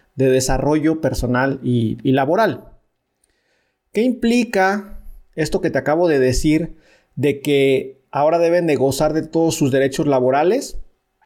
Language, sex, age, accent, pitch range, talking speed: Spanish, male, 40-59, Mexican, 130-165 Hz, 135 wpm